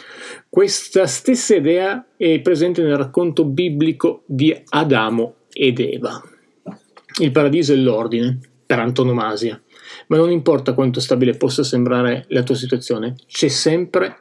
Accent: native